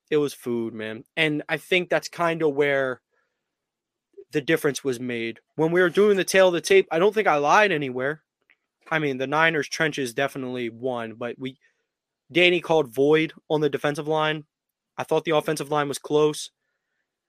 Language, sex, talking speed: English, male, 185 wpm